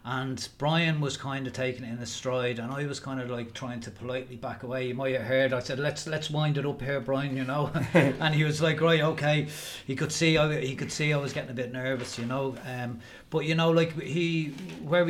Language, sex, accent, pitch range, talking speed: English, male, Irish, 130-155 Hz, 250 wpm